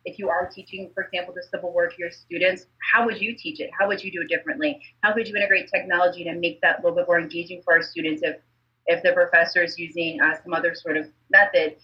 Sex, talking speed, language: female, 260 wpm, English